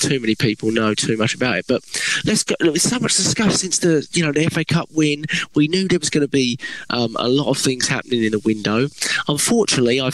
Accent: British